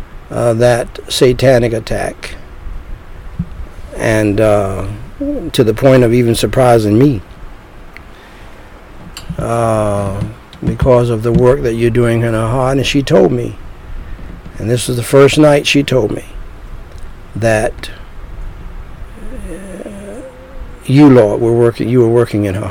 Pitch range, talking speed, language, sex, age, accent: 110-140 Hz, 125 wpm, English, male, 60-79, American